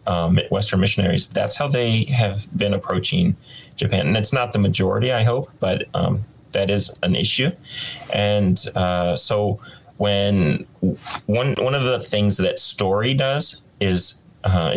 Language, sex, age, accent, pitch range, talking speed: English, male, 30-49, American, 95-130 Hz, 150 wpm